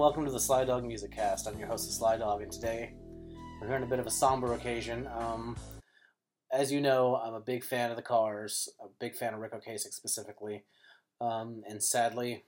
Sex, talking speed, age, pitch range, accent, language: male, 215 wpm, 30-49, 110-125 Hz, American, English